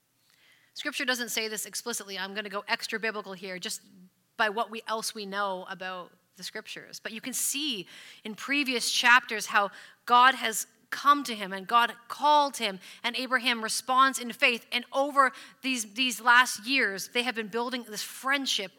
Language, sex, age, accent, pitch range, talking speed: English, female, 30-49, American, 210-255 Hz, 180 wpm